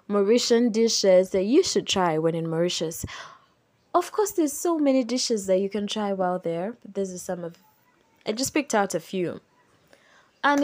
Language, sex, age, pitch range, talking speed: English, female, 20-39, 185-255 Hz, 175 wpm